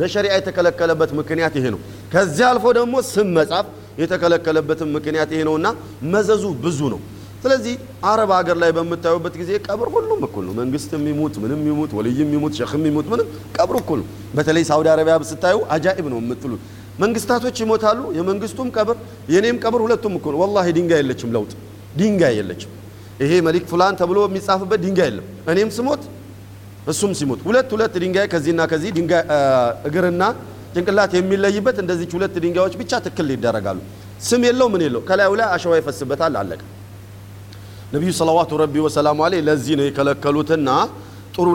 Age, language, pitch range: 40-59, Amharic, 140-190 Hz